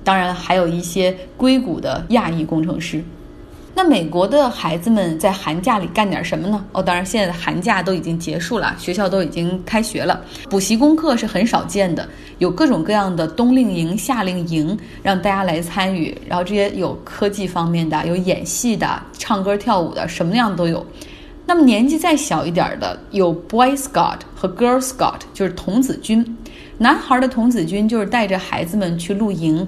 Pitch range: 180-235 Hz